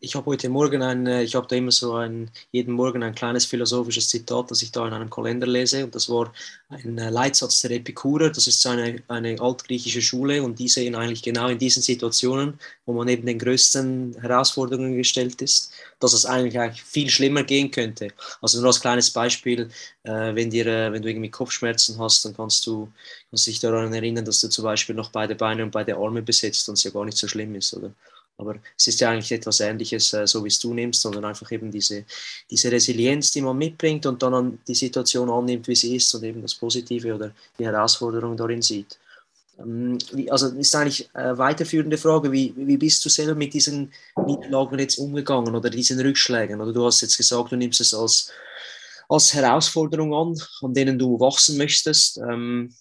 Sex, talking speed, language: male, 200 wpm, German